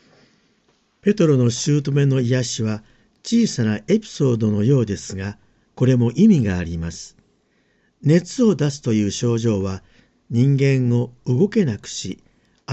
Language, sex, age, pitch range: Japanese, male, 50-69, 110-170 Hz